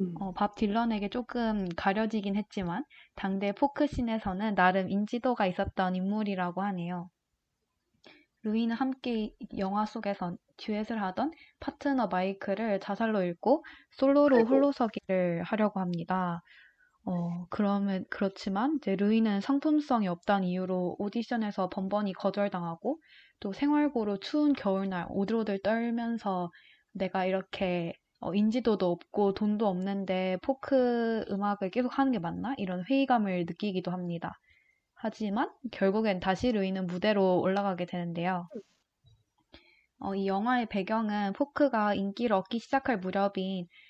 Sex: female